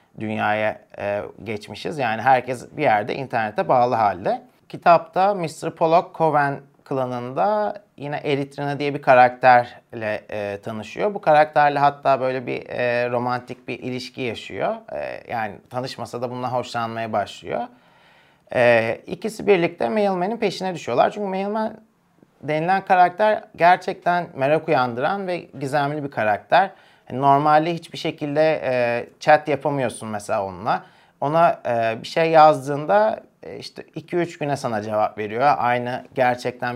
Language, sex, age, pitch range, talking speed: Turkish, male, 30-49, 120-170 Hz, 120 wpm